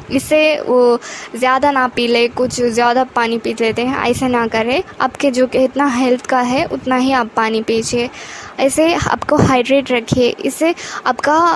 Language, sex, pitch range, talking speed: Hindi, female, 250-285 Hz, 165 wpm